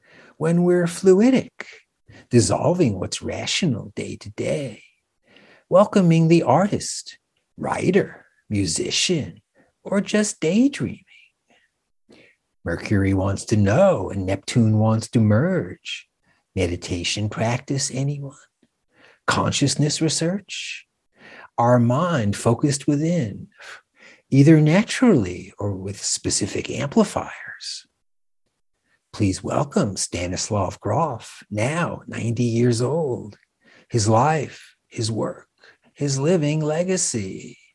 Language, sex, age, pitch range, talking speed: English, male, 60-79, 105-160 Hz, 85 wpm